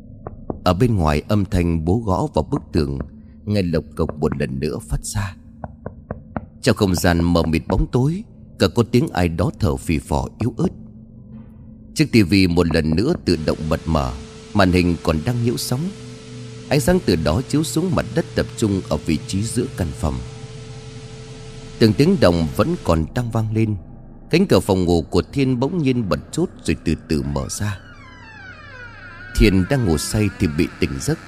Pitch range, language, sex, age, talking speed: 85-125 Hz, Vietnamese, male, 30-49, 185 wpm